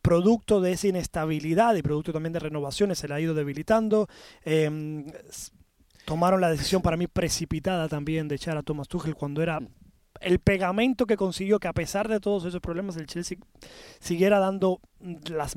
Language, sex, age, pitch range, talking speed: Spanish, male, 20-39, 165-205 Hz, 175 wpm